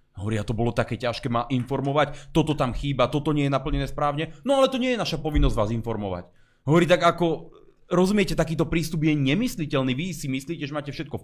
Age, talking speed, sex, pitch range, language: 30-49, 215 wpm, male, 120-160 Hz, Slovak